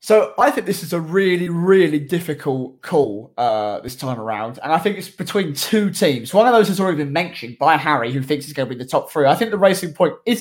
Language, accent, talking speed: English, British, 260 wpm